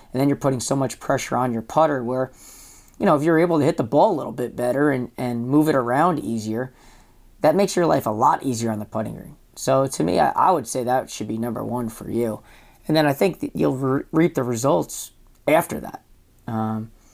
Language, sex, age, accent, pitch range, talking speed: English, male, 30-49, American, 115-145 Hz, 235 wpm